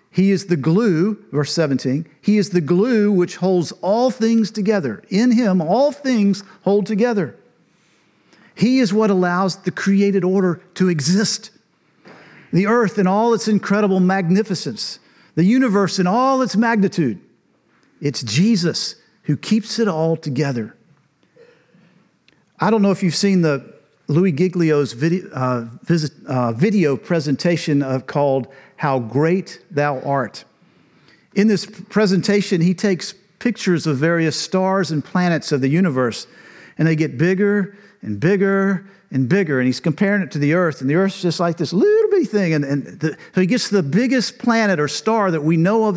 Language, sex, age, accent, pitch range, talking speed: English, male, 50-69, American, 155-210 Hz, 160 wpm